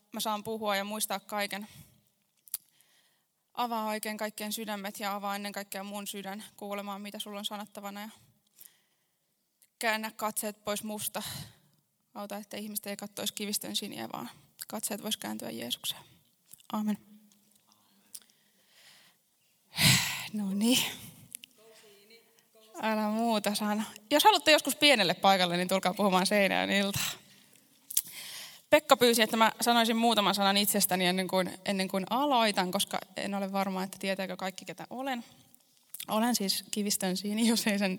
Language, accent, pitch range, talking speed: Finnish, native, 195-220 Hz, 130 wpm